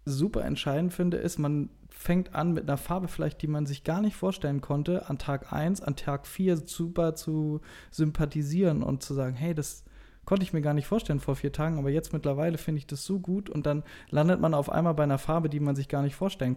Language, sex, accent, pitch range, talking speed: German, male, German, 135-160 Hz, 230 wpm